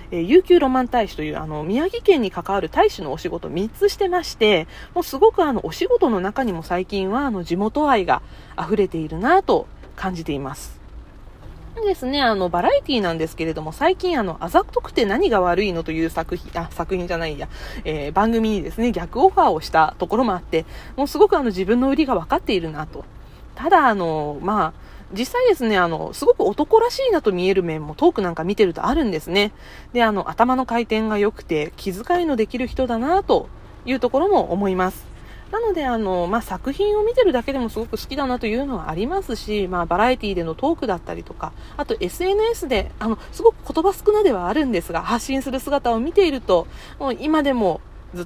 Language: Japanese